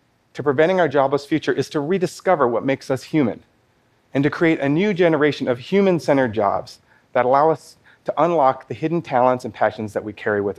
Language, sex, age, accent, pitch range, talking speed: French, male, 40-59, American, 125-165 Hz, 200 wpm